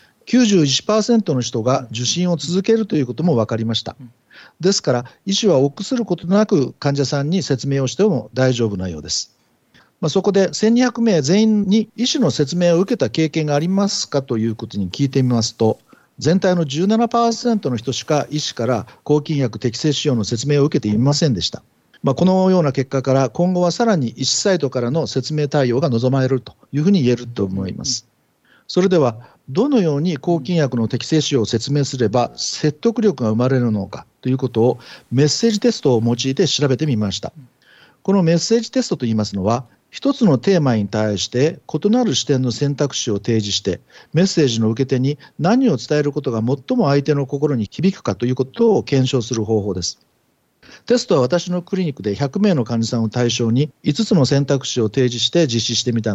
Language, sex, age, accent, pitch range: Japanese, male, 50-69, native, 120-180 Hz